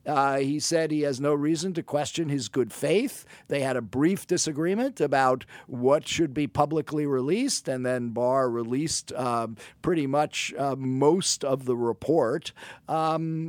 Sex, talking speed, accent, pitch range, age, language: male, 160 wpm, American, 140-180 Hz, 50-69, English